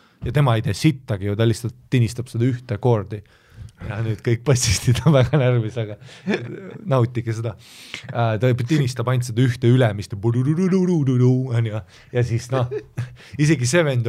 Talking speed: 140 wpm